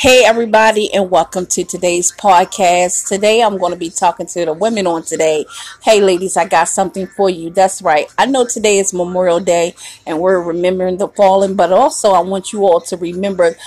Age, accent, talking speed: 30-49, American, 200 wpm